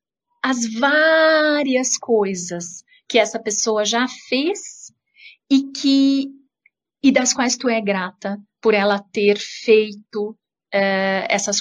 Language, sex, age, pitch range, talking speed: Portuguese, female, 40-59, 195-250 Hz, 105 wpm